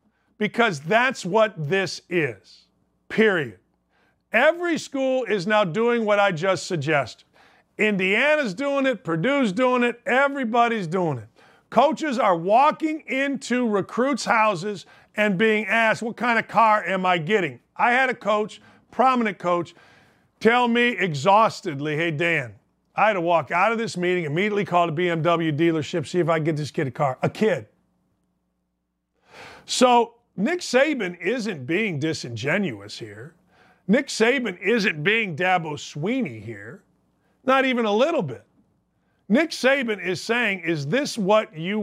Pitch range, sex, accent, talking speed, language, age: 170-235 Hz, male, American, 145 wpm, English, 50-69